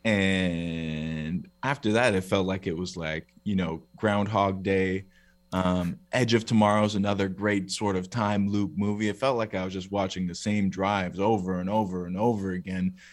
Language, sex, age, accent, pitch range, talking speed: English, male, 20-39, American, 90-115 Hz, 185 wpm